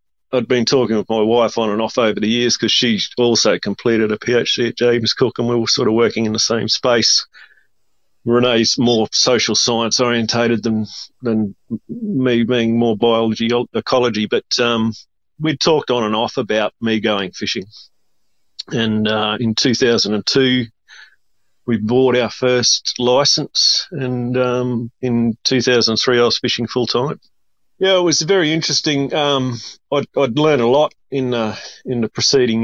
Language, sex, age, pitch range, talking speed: English, male, 40-59, 110-125 Hz, 160 wpm